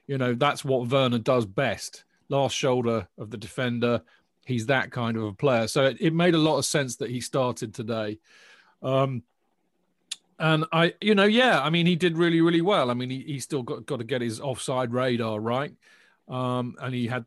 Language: English